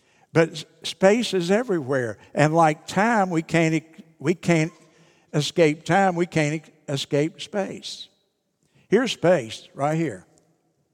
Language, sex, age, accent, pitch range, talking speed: English, male, 60-79, American, 145-175 Hz, 115 wpm